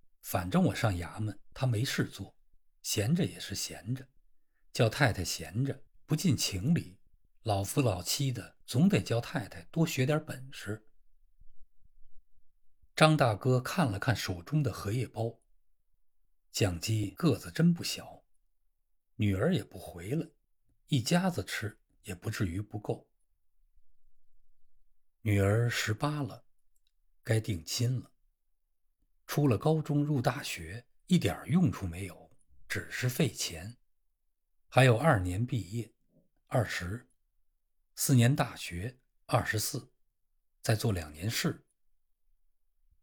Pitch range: 95-140 Hz